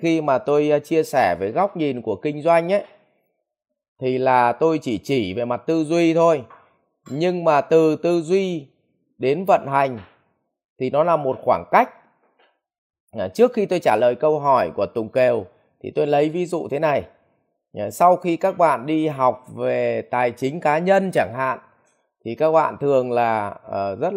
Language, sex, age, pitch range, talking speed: Vietnamese, male, 20-39, 120-160 Hz, 180 wpm